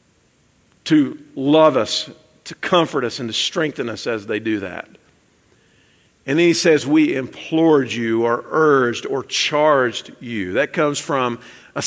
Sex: male